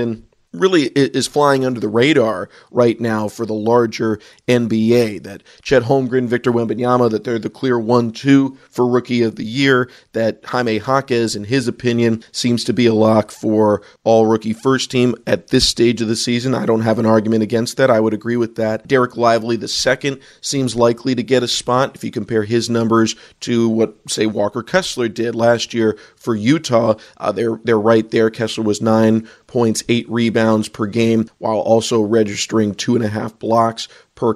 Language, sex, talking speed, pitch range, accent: English, male, 190 wpm, 110-125 Hz, American